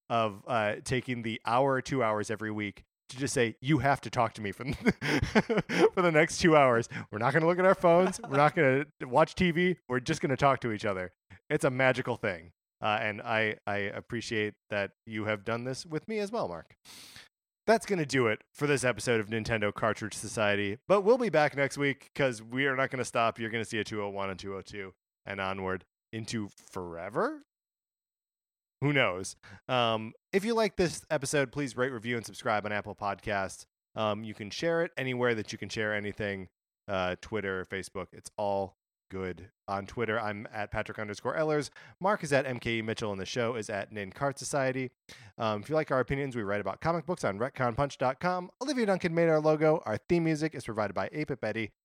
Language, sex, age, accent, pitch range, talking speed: English, male, 20-39, American, 105-140 Hz, 210 wpm